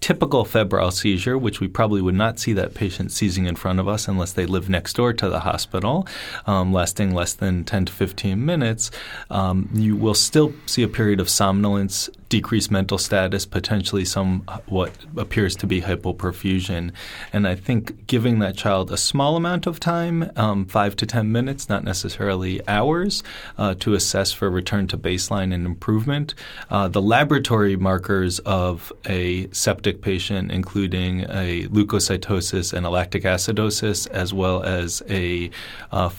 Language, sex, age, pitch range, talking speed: English, male, 30-49, 95-110 Hz, 165 wpm